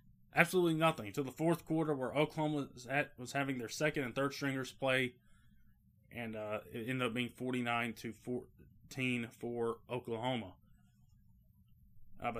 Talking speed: 150 wpm